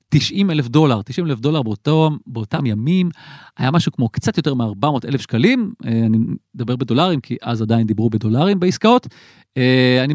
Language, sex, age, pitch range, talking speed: Hebrew, male, 30-49, 120-180 Hz, 160 wpm